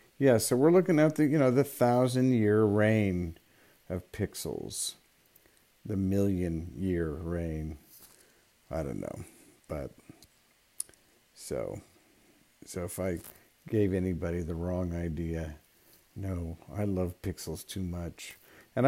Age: 50-69